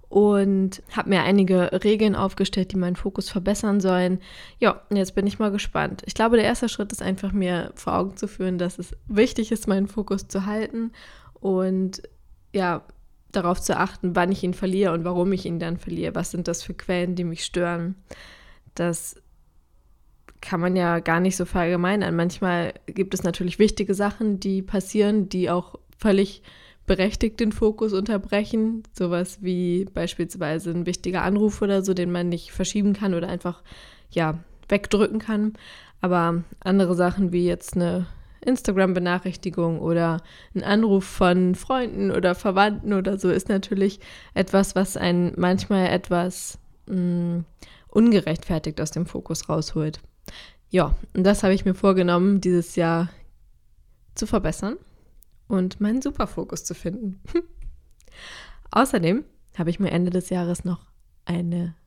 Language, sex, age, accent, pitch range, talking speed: German, female, 20-39, German, 175-205 Hz, 150 wpm